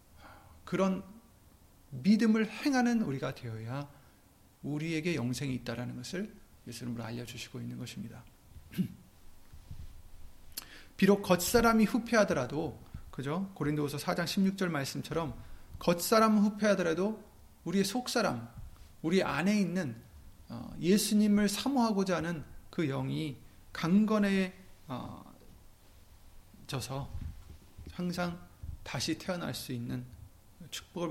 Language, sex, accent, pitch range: Korean, male, native, 100-165 Hz